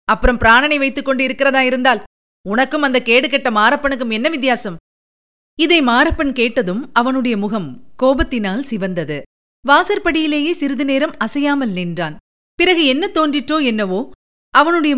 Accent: native